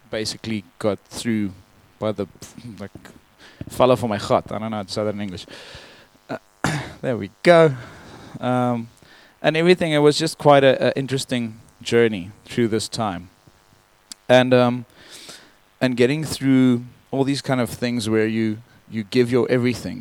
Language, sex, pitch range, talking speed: English, male, 110-125 Hz, 160 wpm